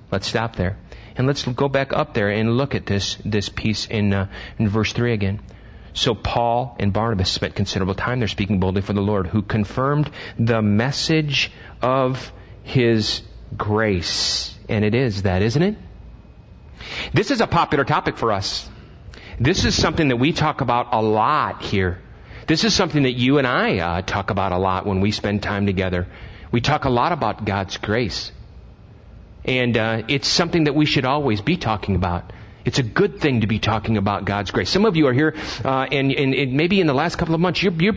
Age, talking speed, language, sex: 40-59, 200 wpm, English, male